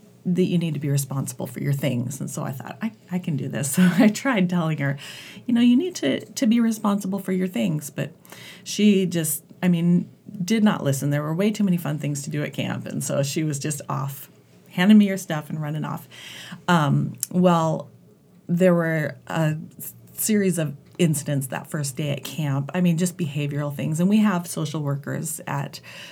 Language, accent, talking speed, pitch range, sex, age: English, American, 205 wpm, 145-180 Hz, female, 30-49